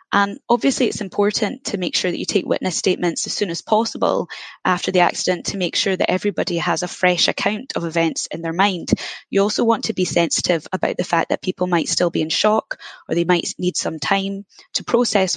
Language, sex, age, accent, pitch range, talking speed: English, female, 20-39, British, 175-215 Hz, 225 wpm